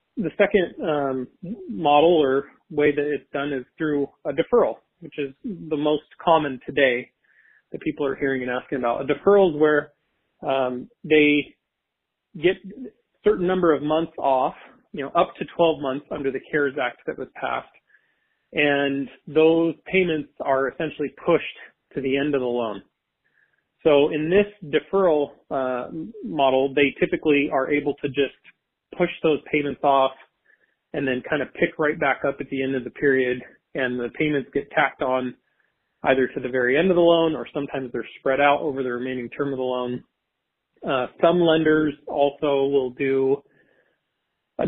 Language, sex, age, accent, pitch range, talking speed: English, male, 30-49, American, 135-160 Hz, 170 wpm